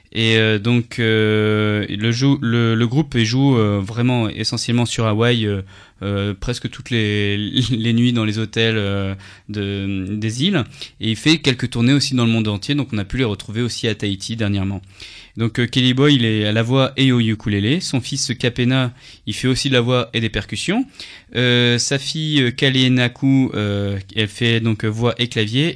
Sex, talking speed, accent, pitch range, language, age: male, 185 wpm, French, 105-130 Hz, French, 20-39